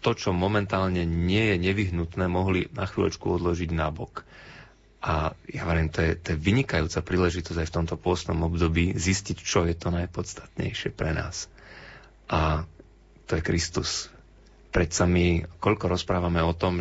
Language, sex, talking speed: Slovak, male, 145 wpm